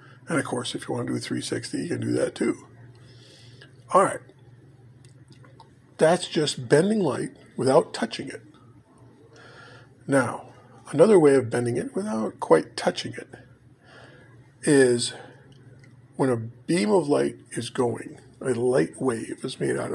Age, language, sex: 50-69, English, male